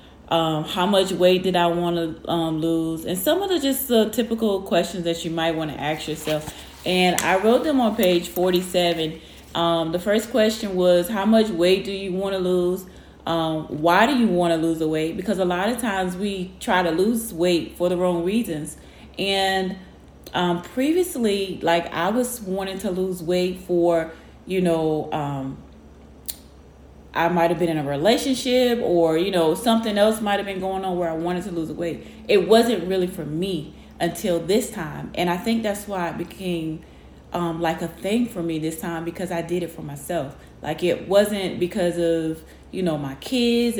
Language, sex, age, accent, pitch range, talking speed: English, female, 30-49, American, 165-195 Hz, 195 wpm